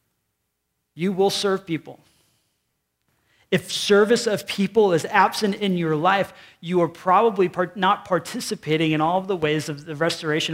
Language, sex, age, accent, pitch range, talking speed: English, male, 30-49, American, 150-195 Hz, 150 wpm